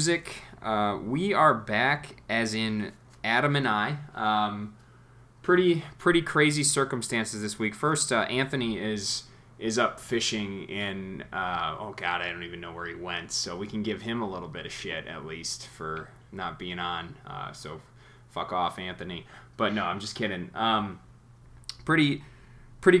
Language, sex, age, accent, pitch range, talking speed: English, male, 20-39, American, 105-125 Hz, 165 wpm